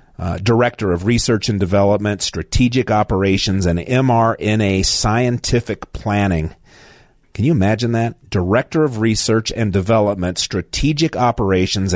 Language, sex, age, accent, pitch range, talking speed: English, male, 40-59, American, 95-120 Hz, 115 wpm